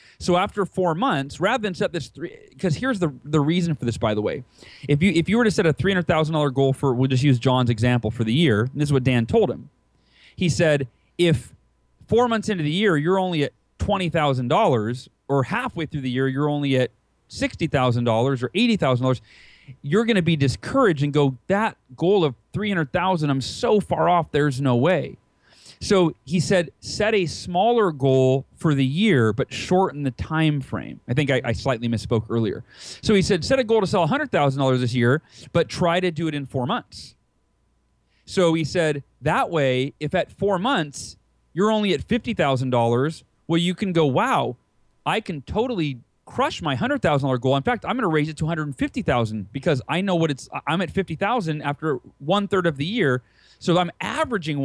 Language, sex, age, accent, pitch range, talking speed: English, male, 30-49, American, 130-185 Hz, 195 wpm